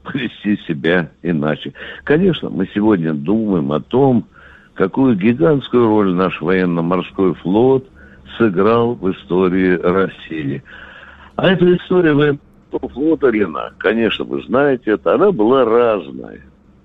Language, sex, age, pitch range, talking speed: Russian, male, 60-79, 90-130 Hz, 115 wpm